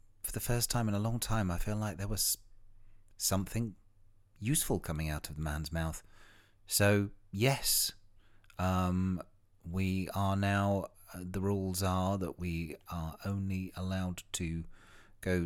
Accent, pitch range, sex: British, 85-100 Hz, male